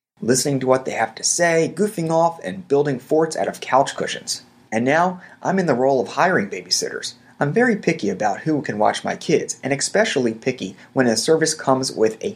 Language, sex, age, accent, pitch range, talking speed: English, male, 30-49, American, 135-185 Hz, 210 wpm